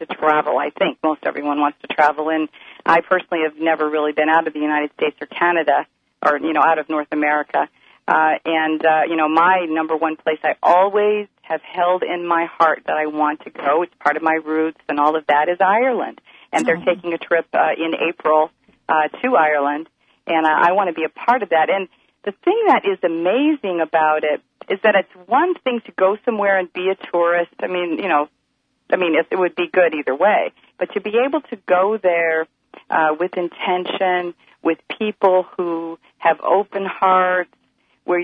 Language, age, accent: English, 40-59, American